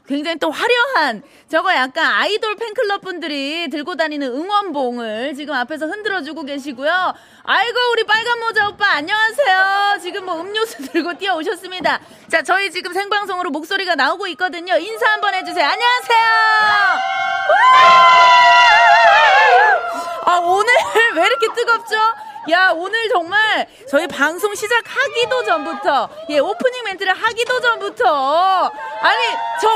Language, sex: Korean, female